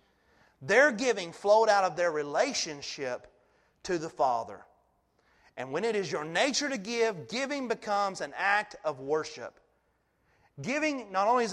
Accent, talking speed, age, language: American, 145 wpm, 30-49, English